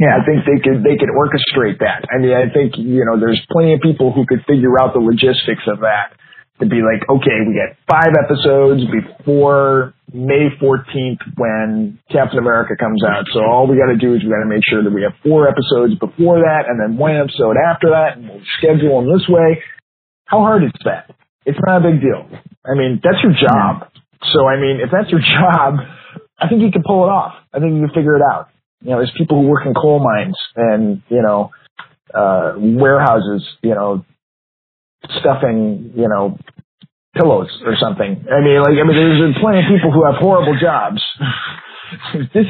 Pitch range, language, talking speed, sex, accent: 125-165 Hz, English, 205 wpm, male, American